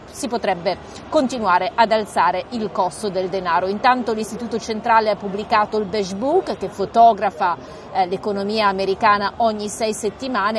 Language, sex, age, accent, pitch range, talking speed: Italian, female, 40-59, native, 200-235 Hz, 135 wpm